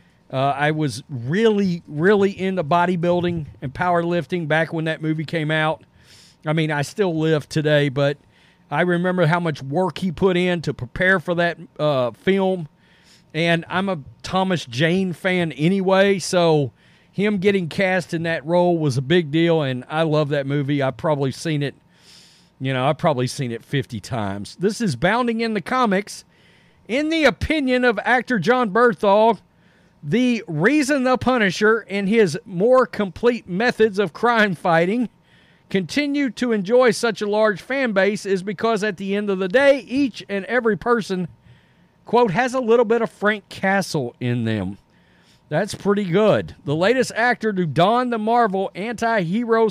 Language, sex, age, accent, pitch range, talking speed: English, male, 40-59, American, 165-225 Hz, 165 wpm